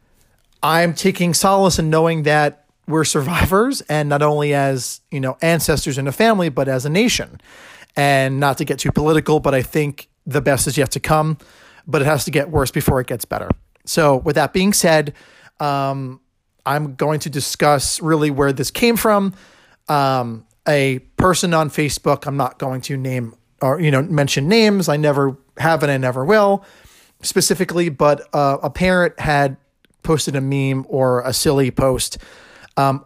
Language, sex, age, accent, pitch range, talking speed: English, male, 40-59, American, 130-155 Hz, 180 wpm